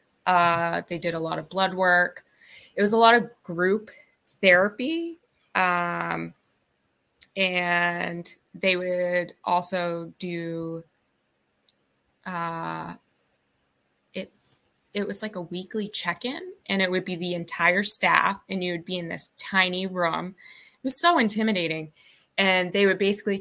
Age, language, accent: 20-39, English, American